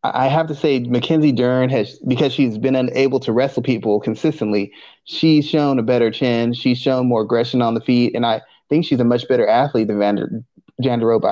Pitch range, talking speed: 115-135 Hz, 195 wpm